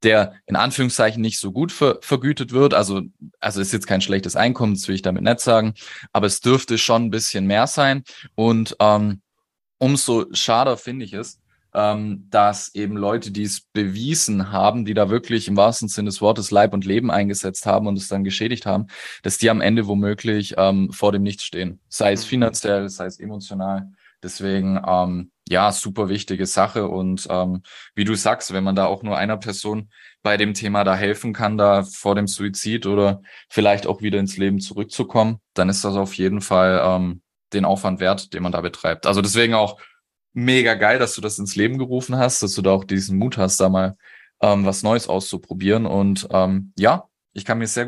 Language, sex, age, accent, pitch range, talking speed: German, male, 20-39, German, 95-110 Hz, 200 wpm